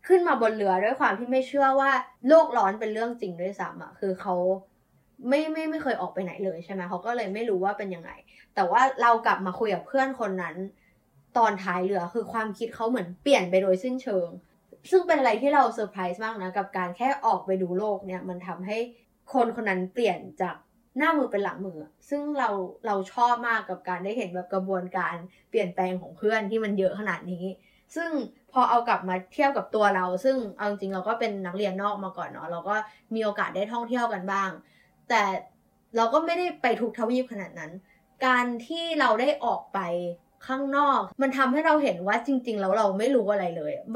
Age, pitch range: 20-39, 190-255 Hz